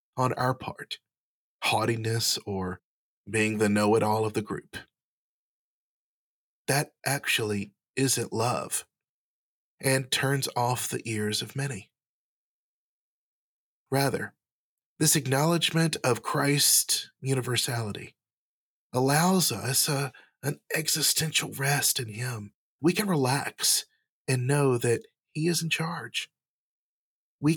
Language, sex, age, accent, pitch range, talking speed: English, male, 40-59, American, 115-145 Hz, 100 wpm